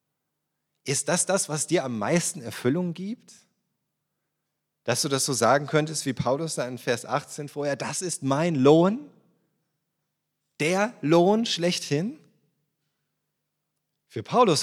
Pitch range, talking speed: 120-170 Hz, 125 wpm